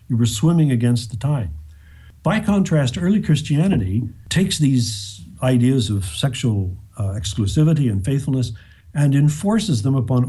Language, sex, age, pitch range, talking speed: English, male, 50-69, 105-140 Hz, 135 wpm